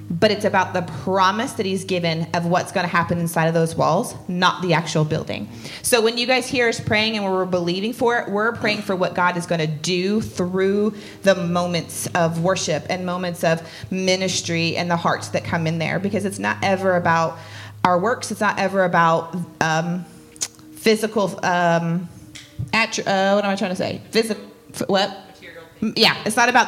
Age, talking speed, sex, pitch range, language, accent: 30-49, 190 wpm, female, 170-205 Hz, English, American